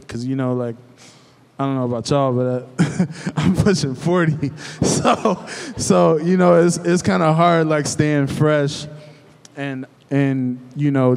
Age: 20-39